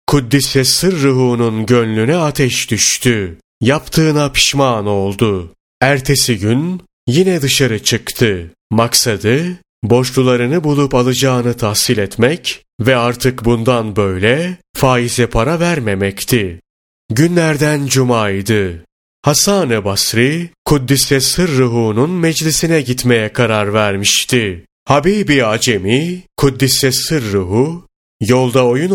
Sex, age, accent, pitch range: male, 30-49, native, 110-150 Hz